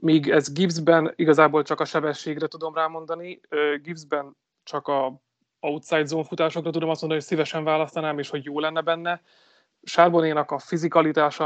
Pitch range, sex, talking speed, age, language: 145-160 Hz, male, 150 wpm, 30-49, Hungarian